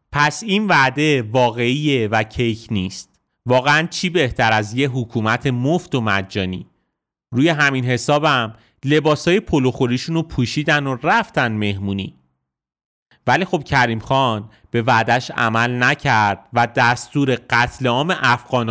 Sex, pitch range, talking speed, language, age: male, 115-145 Hz, 125 wpm, Persian, 30-49